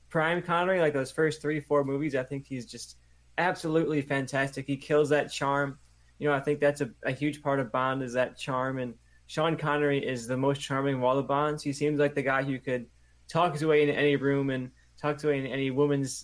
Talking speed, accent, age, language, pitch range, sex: 235 wpm, American, 20-39, English, 125-145 Hz, male